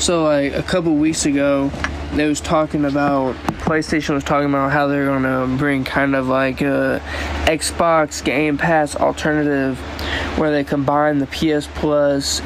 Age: 20-39